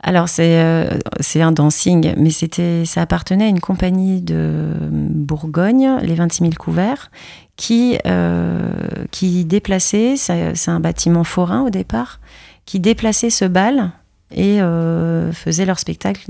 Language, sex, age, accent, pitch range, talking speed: French, female, 30-49, French, 160-185 Hz, 140 wpm